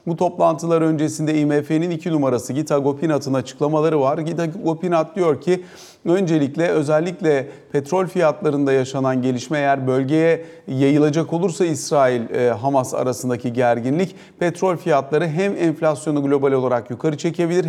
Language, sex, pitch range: Turkish, male, 140-170 Hz